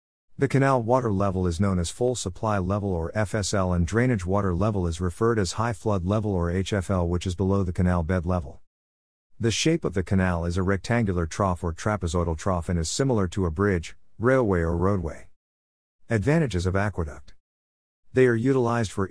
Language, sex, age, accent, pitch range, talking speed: English, male, 50-69, American, 85-110 Hz, 185 wpm